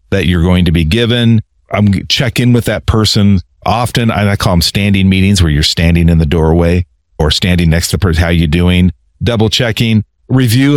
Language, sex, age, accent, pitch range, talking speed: English, male, 40-59, American, 90-125 Hz, 200 wpm